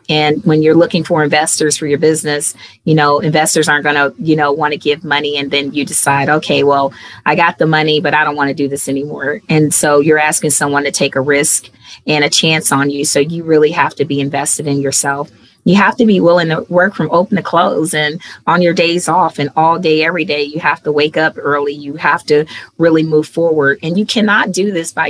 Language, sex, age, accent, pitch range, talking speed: English, female, 30-49, American, 145-160 Hz, 240 wpm